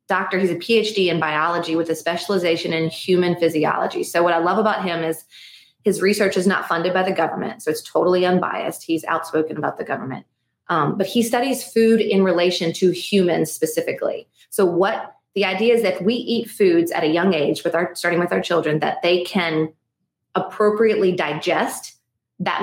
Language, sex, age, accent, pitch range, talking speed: English, female, 30-49, American, 165-200 Hz, 190 wpm